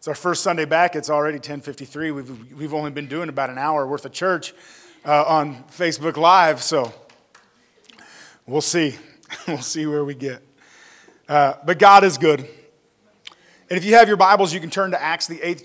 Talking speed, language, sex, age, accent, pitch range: 190 wpm, English, male, 30-49, American, 150-190 Hz